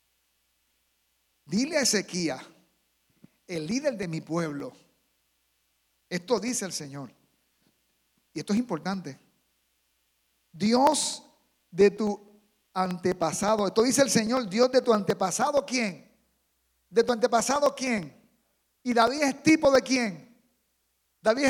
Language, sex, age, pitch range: Spanish, male, 50-69, 195-270 Hz